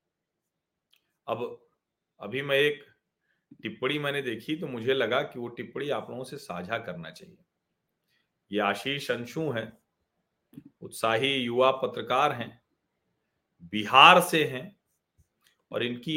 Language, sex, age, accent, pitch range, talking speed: Hindi, male, 40-59, native, 130-170 Hz, 120 wpm